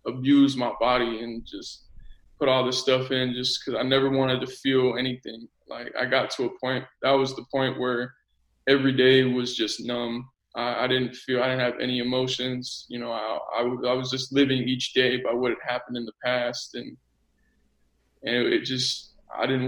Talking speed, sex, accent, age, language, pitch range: 205 wpm, male, American, 20-39, English, 120-130 Hz